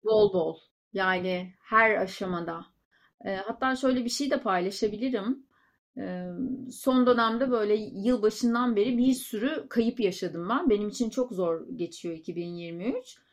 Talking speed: 130 wpm